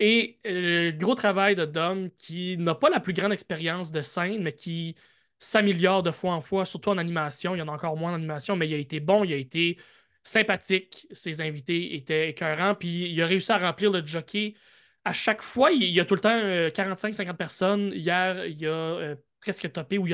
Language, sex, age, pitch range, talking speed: French, male, 20-39, 160-190 Hz, 225 wpm